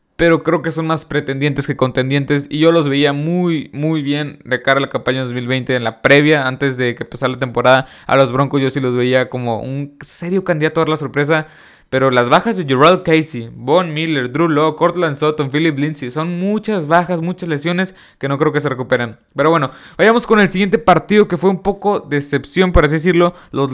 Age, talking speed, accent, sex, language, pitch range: 20-39, 220 wpm, Mexican, male, Spanish, 140-175 Hz